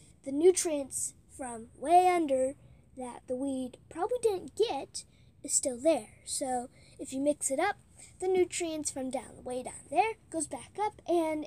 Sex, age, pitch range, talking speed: female, 10-29, 250-335 Hz, 160 wpm